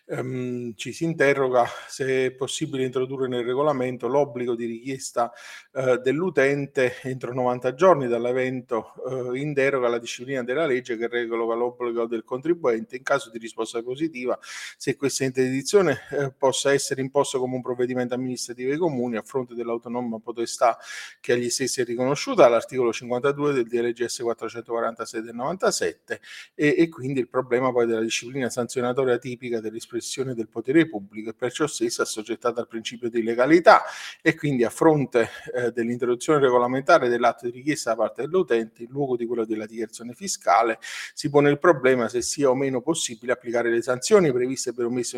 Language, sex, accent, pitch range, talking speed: Italian, male, native, 120-140 Hz, 160 wpm